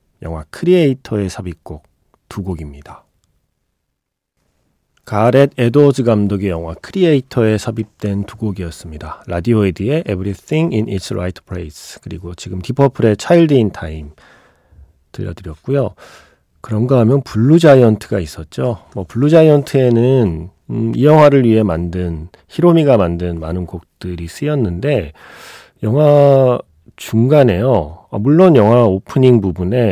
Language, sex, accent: Korean, male, native